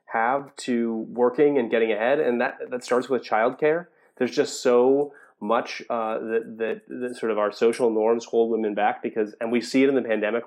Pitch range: 110-125 Hz